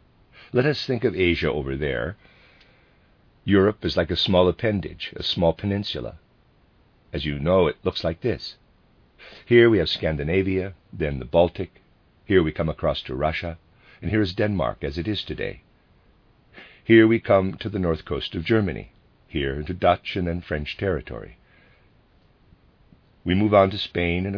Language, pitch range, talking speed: English, 80-105 Hz, 160 wpm